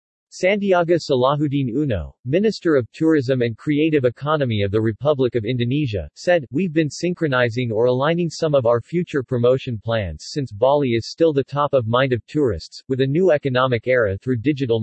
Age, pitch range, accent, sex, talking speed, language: 40-59, 115-150 Hz, American, male, 175 wpm, English